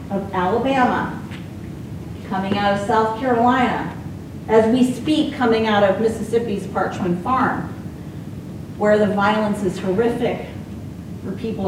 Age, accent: 40-59, American